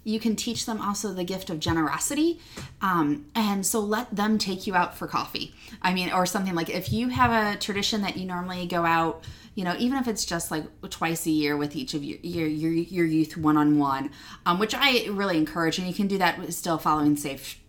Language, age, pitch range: English, 20-39, 155-210 Hz